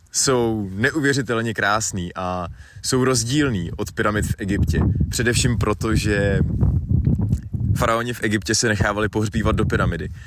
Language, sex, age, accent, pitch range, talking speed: Czech, male, 20-39, native, 85-110 Hz, 125 wpm